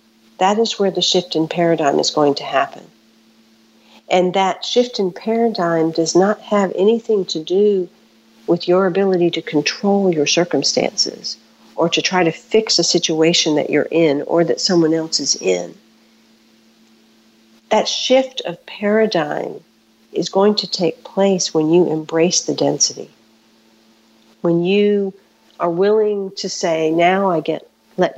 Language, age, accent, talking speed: English, 50-69, American, 145 wpm